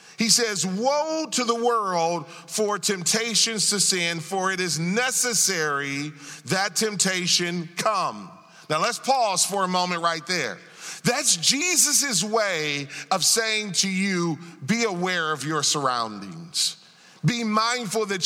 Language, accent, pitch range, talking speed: English, American, 170-230 Hz, 130 wpm